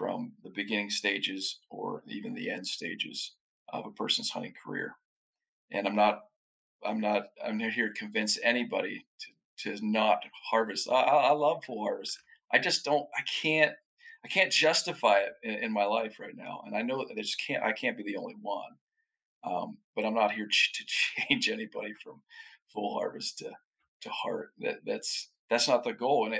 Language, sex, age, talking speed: English, male, 40-59, 190 wpm